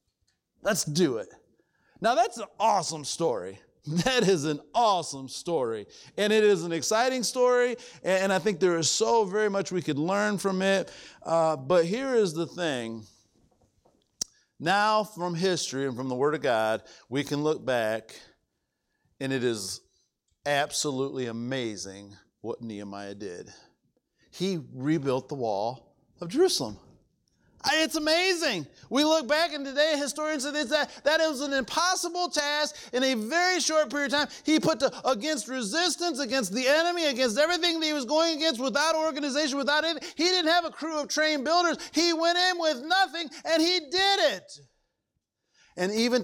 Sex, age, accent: male, 50-69, American